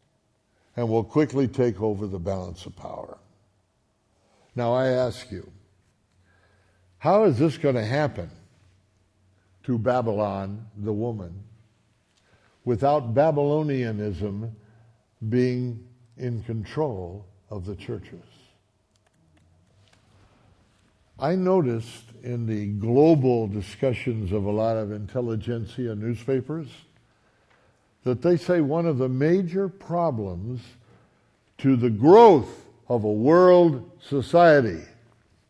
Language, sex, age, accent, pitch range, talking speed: English, male, 60-79, American, 105-130 Hz, 100 wpm